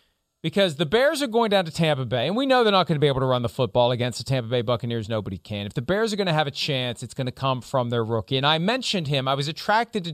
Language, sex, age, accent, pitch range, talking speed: English, male, 40-59, American, 125-170 Hz, 315 wpm